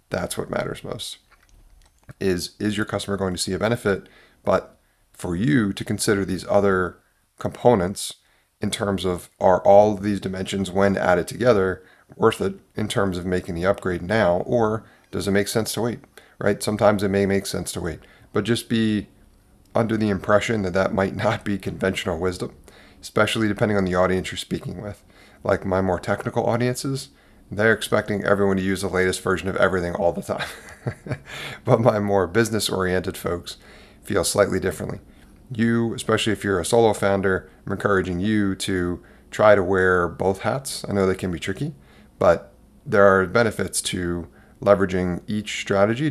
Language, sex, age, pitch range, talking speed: English, male, 30-49, 95-105 Hz, 170 wpm